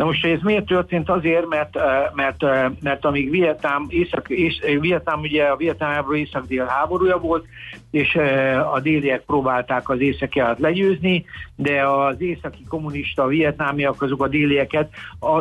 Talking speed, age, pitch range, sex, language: 150 wpm, 60-79, 130-155 Hz, male, Hungarian